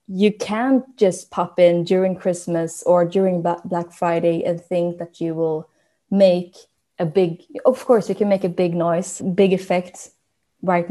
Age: 20-39